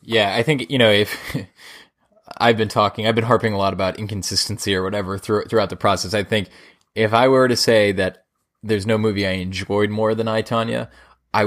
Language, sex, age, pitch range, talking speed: English, male, 20-39, 95-110 Hz, 205 wpm